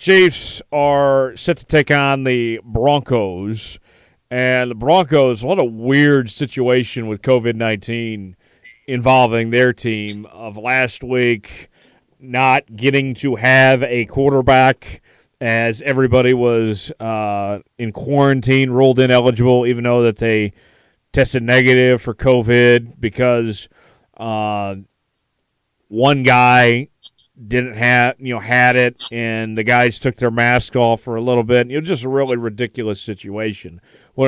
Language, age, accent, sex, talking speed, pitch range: English, 40-59, American, male, 130 wpm, 115-135 Hz